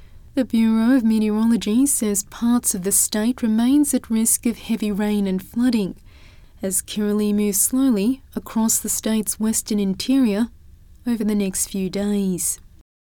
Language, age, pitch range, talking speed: English, 20-39, 205-235 Hz, 145 wpm